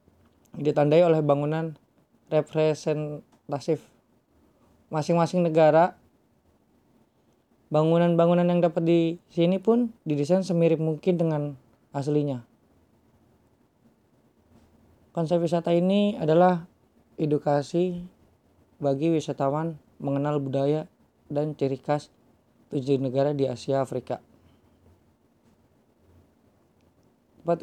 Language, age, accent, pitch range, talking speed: Indonesian, 20-39, native, 135-165 Hz, 75 wpm